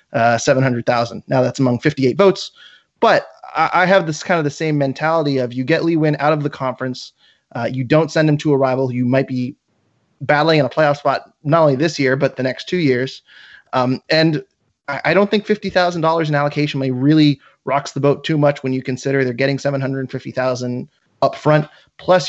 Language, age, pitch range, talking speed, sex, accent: English, 30-49, 130-155 Hz, 220 wpm, male, American